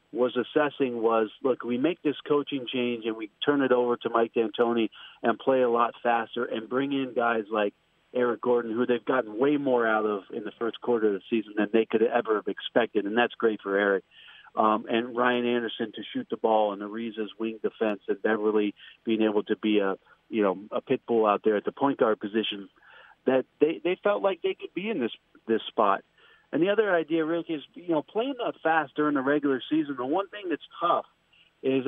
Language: English